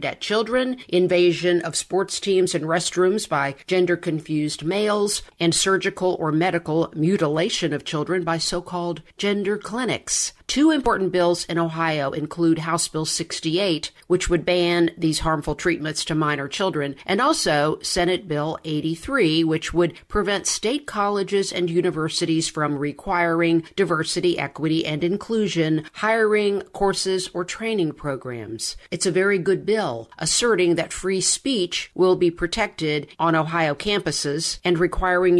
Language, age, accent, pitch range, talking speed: English, 50-69, American, 160-195 Hz, 135 wpm